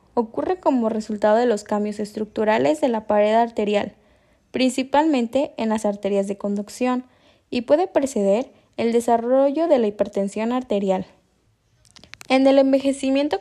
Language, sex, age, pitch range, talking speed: Spanish, female, 10-29, 205-265 Hz, 130 wpm